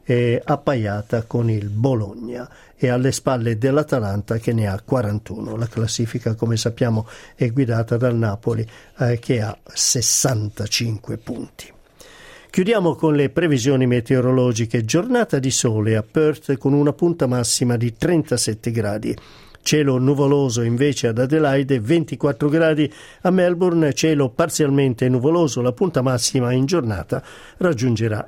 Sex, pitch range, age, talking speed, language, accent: male, 120-150 Hz, 50-69, 125 wpm, Italian, native